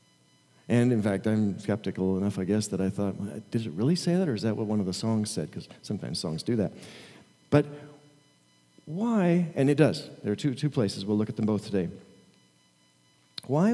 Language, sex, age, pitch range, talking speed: English, male, 40-59, 100-145 Hz, 210 wpm